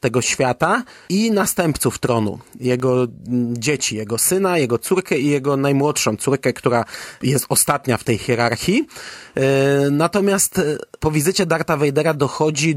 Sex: male